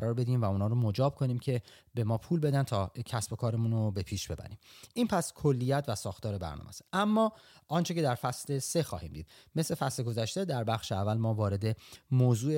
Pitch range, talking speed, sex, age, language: 100-140 Hz, 210 wpm, male, 30-49, Persian